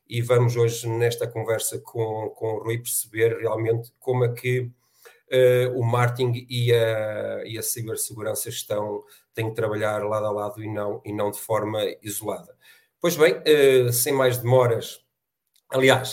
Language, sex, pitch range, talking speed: Portuguese, male, 115-130 Hz, 140 wpm